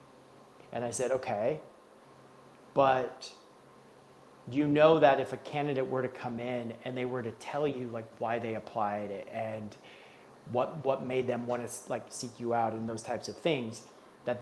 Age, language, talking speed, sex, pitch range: 30-49, English, 175 wpm, male, 120-150 Hz